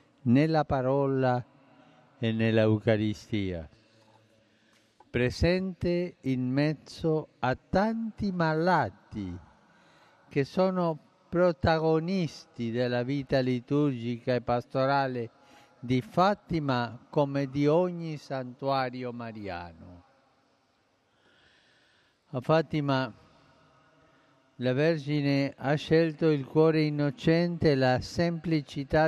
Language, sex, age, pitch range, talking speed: Italian, male, 50-69, 125-155 Hz, 75 wpm